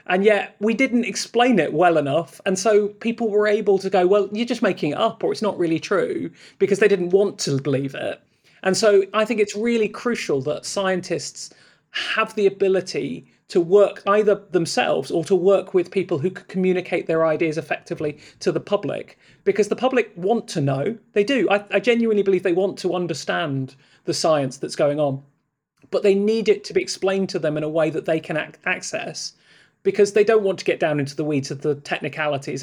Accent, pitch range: British, 170-210 Hz